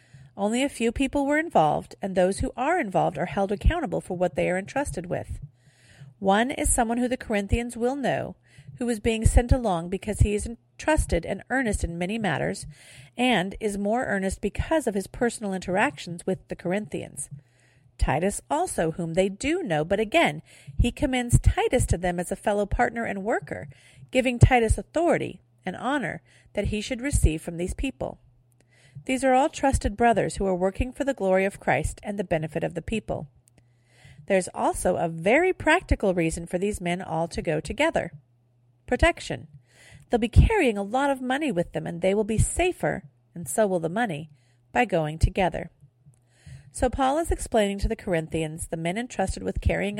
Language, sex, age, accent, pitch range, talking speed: English, female, 40-59, American, 145-235 Hz, 180 wpm